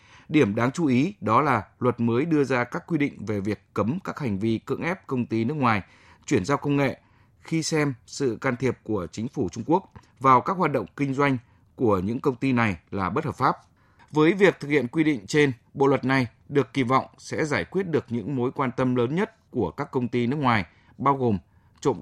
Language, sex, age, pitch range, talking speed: Vietnamese, male, 20-39, 110-140 Hz, 235 wpm